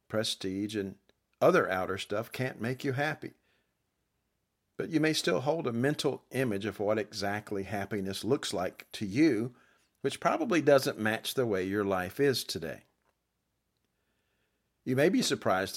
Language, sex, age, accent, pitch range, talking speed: English, male, 50-69, American, 100-140 Hz, 150 wpm